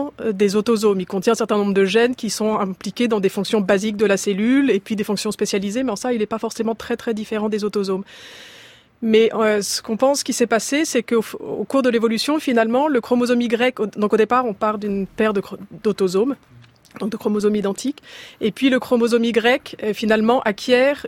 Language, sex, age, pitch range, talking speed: French, female, 30-49, 210-250 Hz, 210 wpm